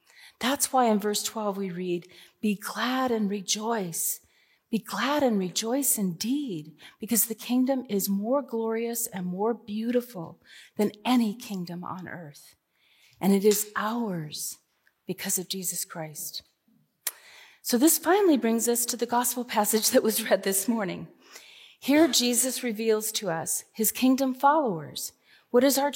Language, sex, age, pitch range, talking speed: English, female, 40-59, 190-245 Hz, 145 wpm